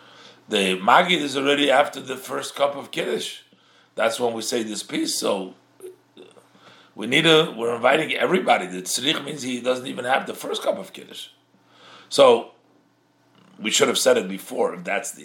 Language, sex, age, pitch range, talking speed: English, male, 50-69, 105-145 Hz, 175 wpm